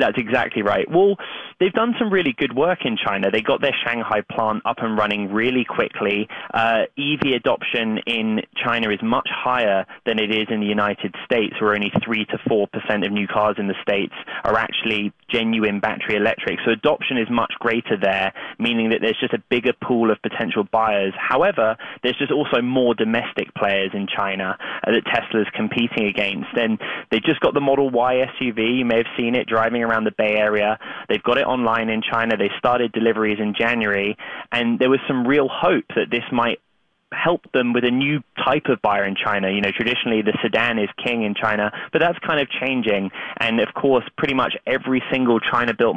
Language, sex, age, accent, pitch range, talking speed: English, male, 20-39, British, 110-125 Hz, 200 wpm